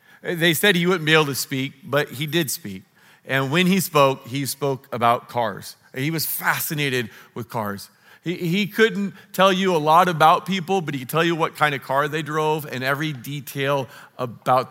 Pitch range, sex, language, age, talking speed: 125-165 Hz, male, English, 40-59, 200 wpm